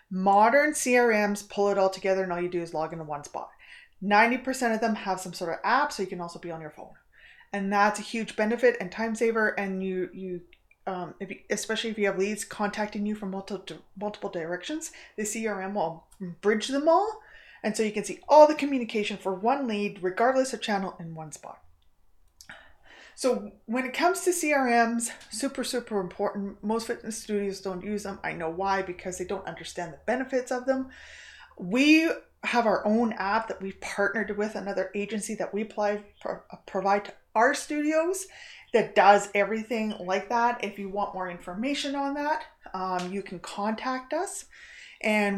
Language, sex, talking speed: English, female, 185 wpm